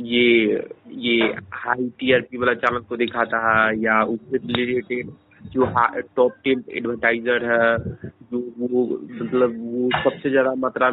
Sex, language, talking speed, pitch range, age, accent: male, Hindi, 120 wpm, 115-135 Hz, 30-49, native